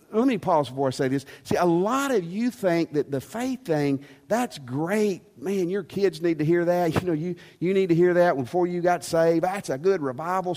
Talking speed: 240 wpm